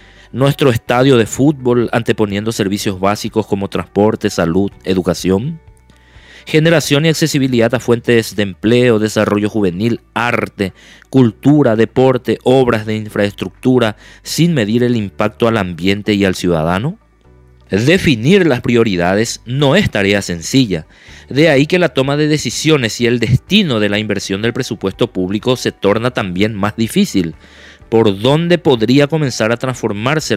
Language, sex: Spanish, male